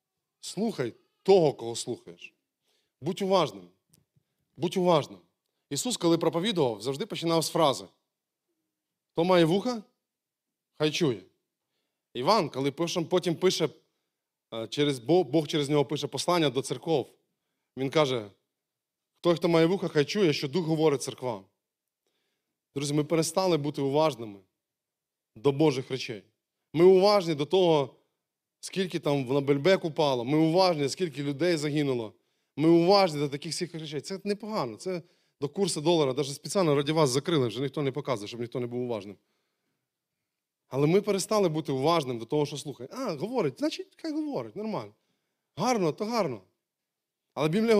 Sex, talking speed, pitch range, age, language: male, 145 wpm, 145-200 Hz, 20-39, Ukrainian